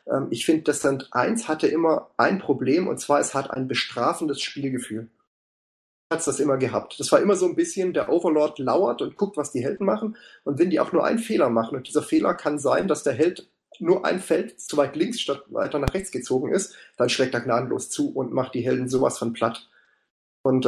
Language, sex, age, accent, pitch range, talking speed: German, male, 30-49, German, 130-190 Hz, 220 wpm